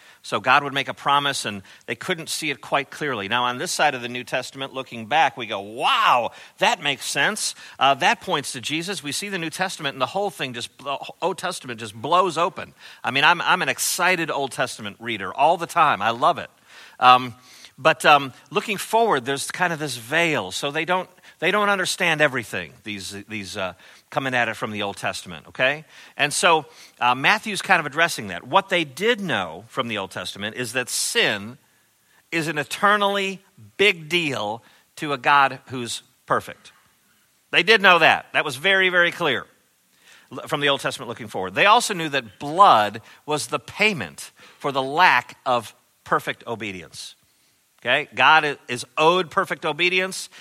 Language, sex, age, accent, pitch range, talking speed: English, male, 50-69, American, 125-180 Hz, 185 wpm